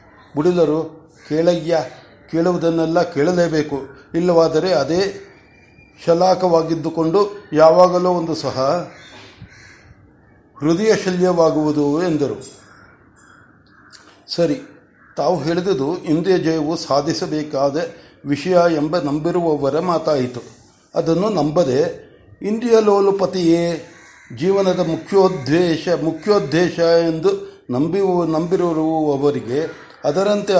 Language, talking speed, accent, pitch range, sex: Kannada, 65 wpm, native, 150-180 Hz, male